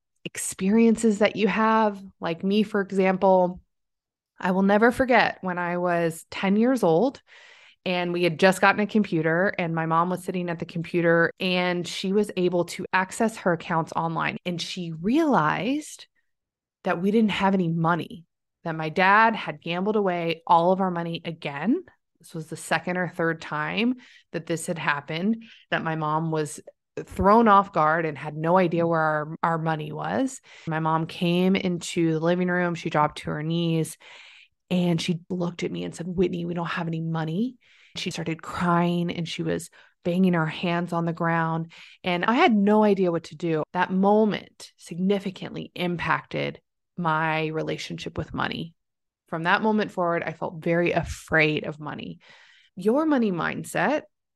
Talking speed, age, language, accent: 170 wpm, 20-39, English, American